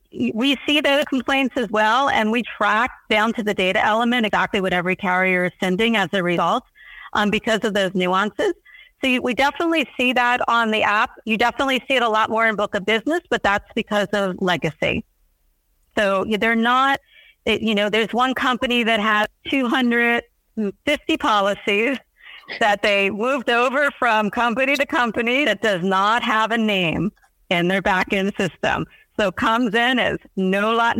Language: English